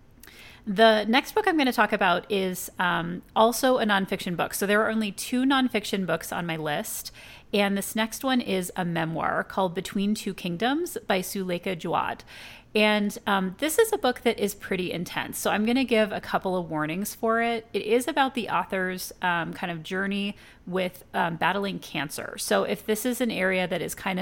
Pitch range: 185-225 Hz